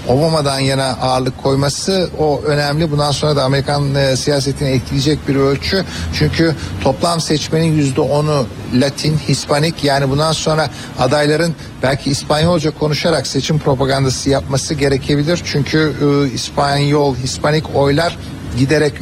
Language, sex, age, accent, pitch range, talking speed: Turkish, male, 60-79, native, 140-160 Hz, 115 wpm